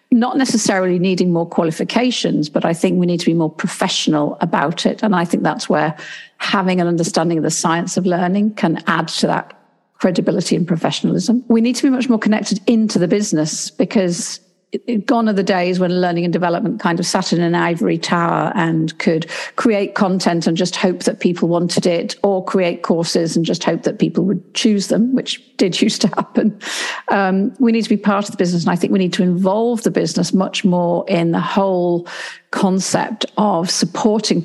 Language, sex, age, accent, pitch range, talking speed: English, female, 50-69, British, 175-220 Hz, 200 wpm